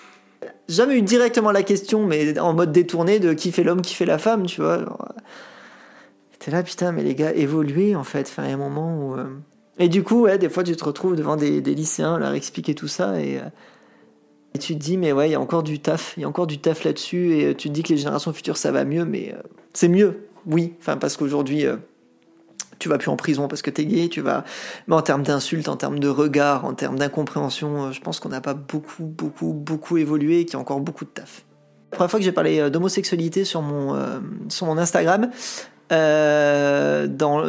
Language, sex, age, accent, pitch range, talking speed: French, male, 30-49, French, 150-190 Hz, 240 wpm